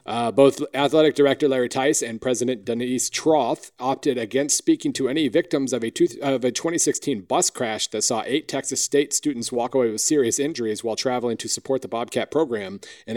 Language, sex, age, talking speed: English, male, 40-59, 190 wpm